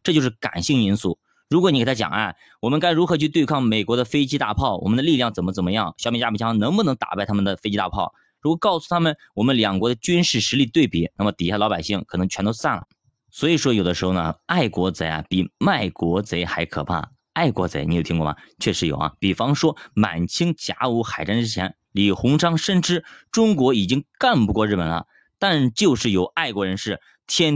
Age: 20-39